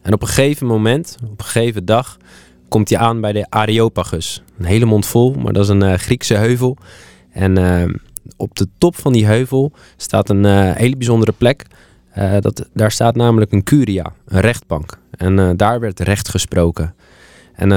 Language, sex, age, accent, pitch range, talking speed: Dutch, male, 20-39, Dutch, 95-125 Hz, 185 wpm